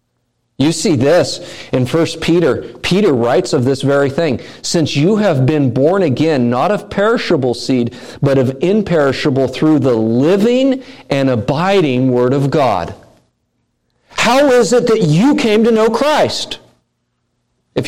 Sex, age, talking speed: male, 50-69, 145 wpm